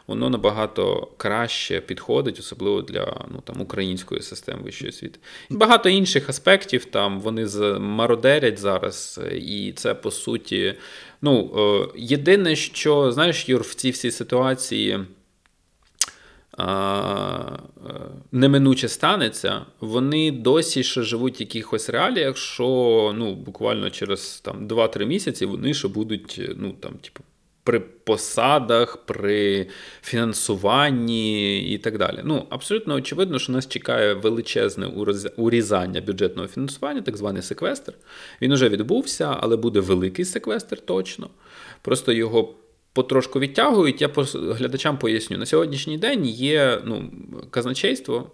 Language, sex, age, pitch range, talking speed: Ukrainian, male, 20-39, 105-135 Hz, 120 wpm